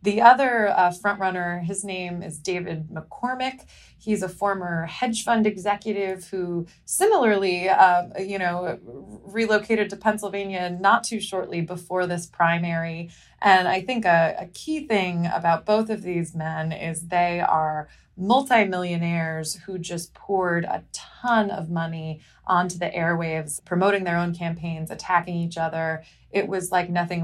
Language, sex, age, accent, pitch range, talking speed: English, female, 20-39, American, 170-210 Hz, 150 wpm